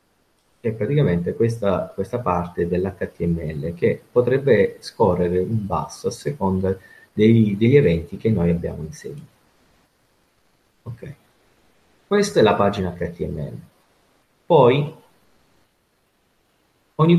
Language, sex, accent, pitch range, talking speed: Italian, male, native, 90-130 Hz, 100 wpm